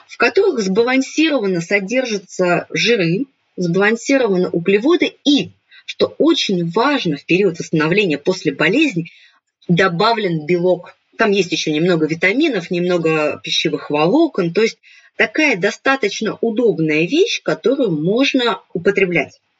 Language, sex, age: Russian, female, 20-39